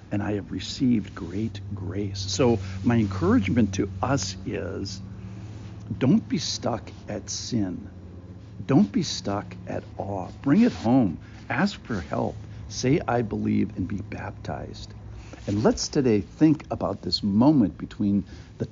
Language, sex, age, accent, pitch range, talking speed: English, male, 60-79, American, 90-110 Hz, 140 wpm